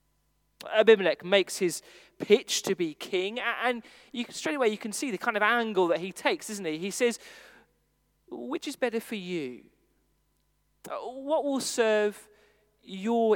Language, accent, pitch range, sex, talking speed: English, British, 190-285 Hz, male, 155 wpm